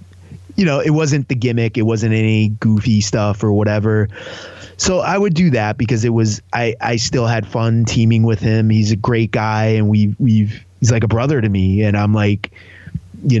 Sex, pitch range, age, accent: male, 100-115 Hz, 30-49, American